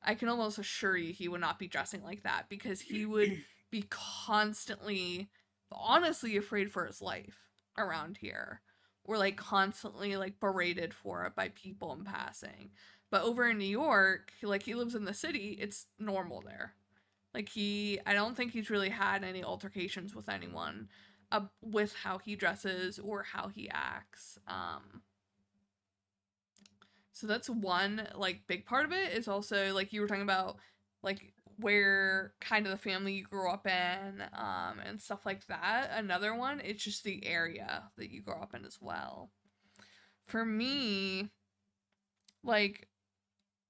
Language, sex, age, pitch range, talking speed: English, female, 20-39, 180-215 Hz, 160 wpm